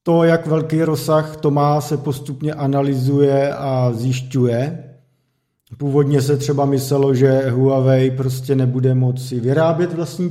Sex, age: male, 40-59